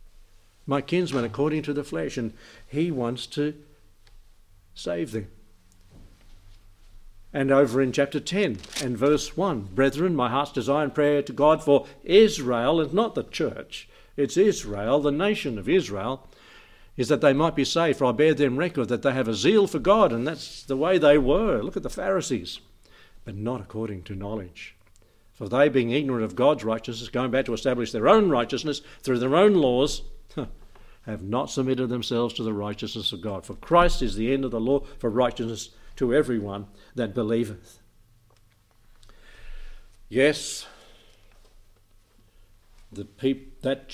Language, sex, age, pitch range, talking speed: English, male, 60-79, 100-140 Hz, 160 wpm